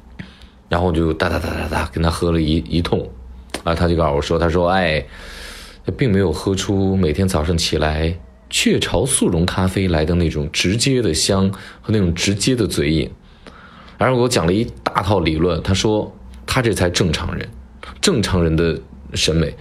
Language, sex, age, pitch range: Chinese, male, 20-39, 80-120 Hz